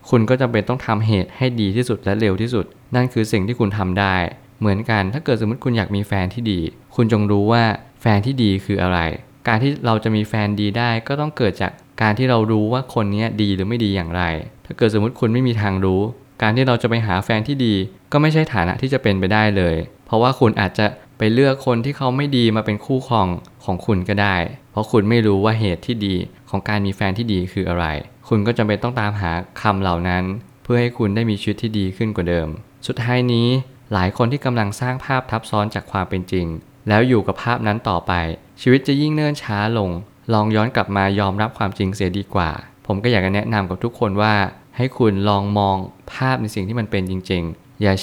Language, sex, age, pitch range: Thai, male, 20-39, 95-120 Hz